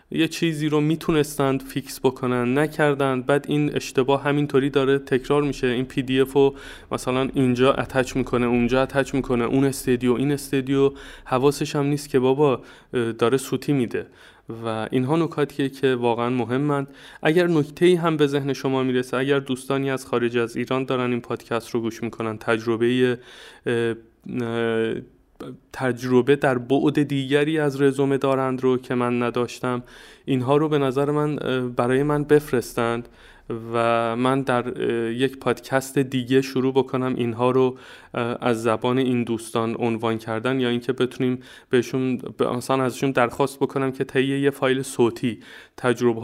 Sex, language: male, Persian